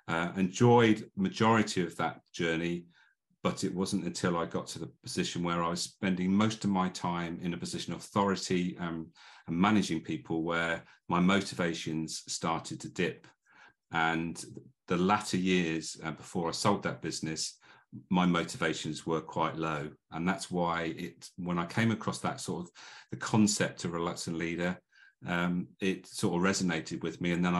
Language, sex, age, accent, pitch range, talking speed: English, male, 40-59, British, 85-100 Hz, 170 wpm